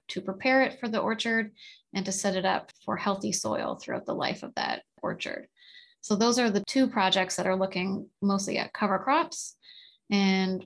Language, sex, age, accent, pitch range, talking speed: English, female, 20-39, American, 190-220 Hz, 190 wpm